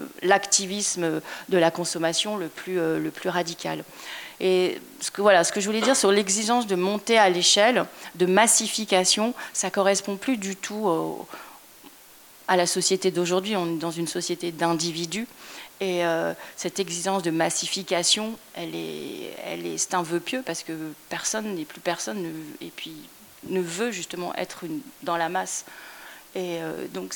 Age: 30-49